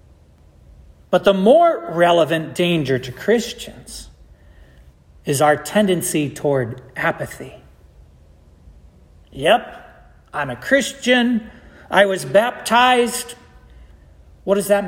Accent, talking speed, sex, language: American, 90 wpm, male, English